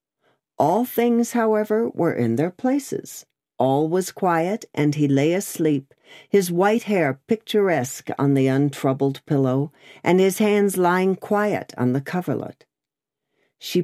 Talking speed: 135 wpm